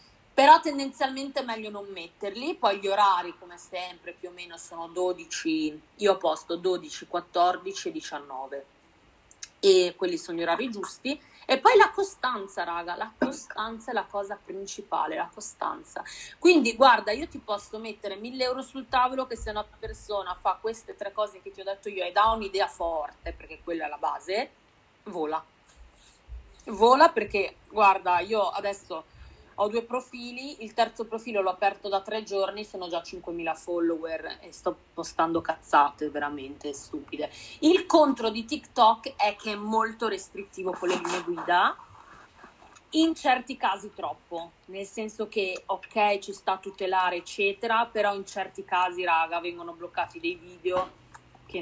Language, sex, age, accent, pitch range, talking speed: Italian, female, 30-49, native, 175-225 Hz, 160 wpm